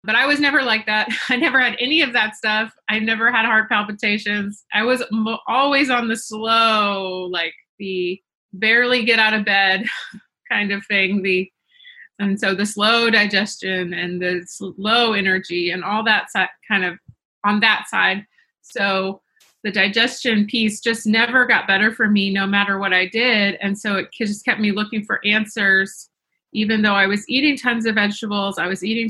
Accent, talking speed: American, 185 wpm